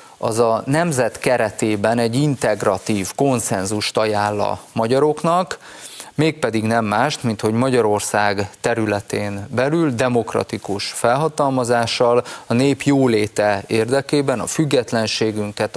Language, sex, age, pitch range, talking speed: Hungarian, male, 30-49, 105-130 Hz, 100 wpm